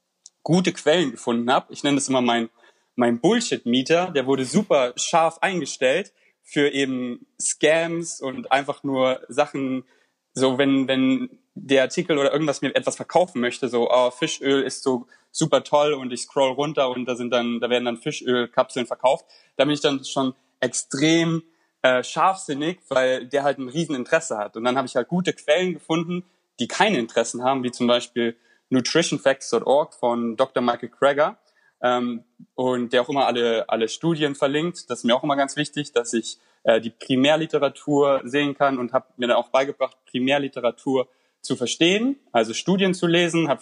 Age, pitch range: 30-49, 125-155 Hz